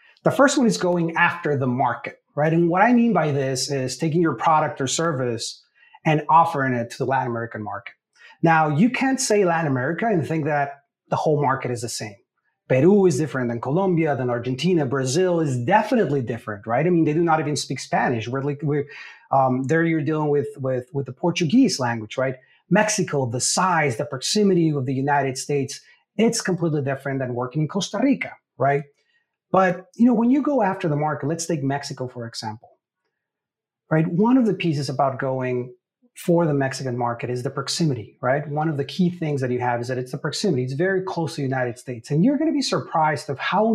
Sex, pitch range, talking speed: male, 130-175 Hz, 210 wpm